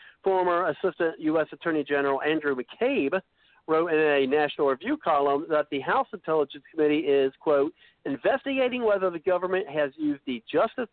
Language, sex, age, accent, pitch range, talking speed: English, male, 50-69, American, 135-200 Hz, 155 wpm